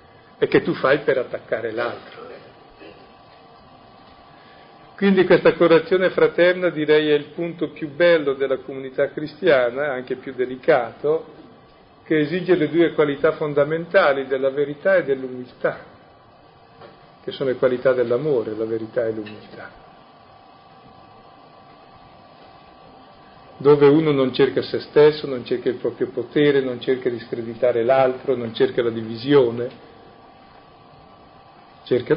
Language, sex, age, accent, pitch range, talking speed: Italian, male, 40-59, native, 130-170 Hz, 120 wpm